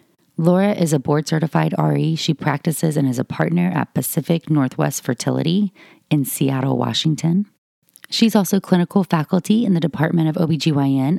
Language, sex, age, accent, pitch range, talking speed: English, female, 30-49, American, 135-165 Hz, 150 wpm